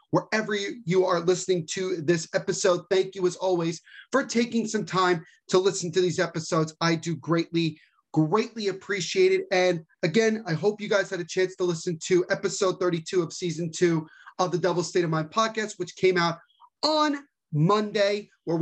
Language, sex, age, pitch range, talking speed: English, male, 30-49, 175-215 Hz, 180 wpm